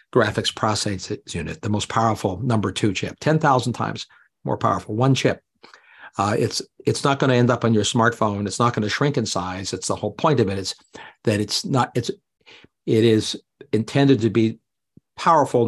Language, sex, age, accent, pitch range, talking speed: English, male, 50-69, American, 105-135 Hz, 200 wpm